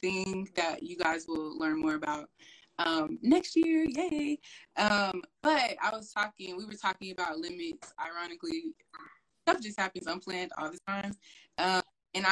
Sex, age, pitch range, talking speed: female, 20-39, 180-265 Hz, 155 wpm